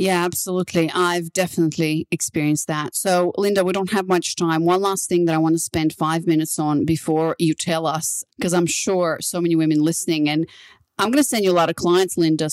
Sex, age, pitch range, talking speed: female, 30-49, 160-195 Hz, 220 wpm